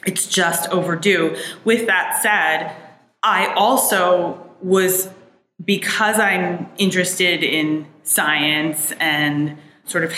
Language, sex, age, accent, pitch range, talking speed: English, female, 20-39, American, 155-195 Hz, 100 wpm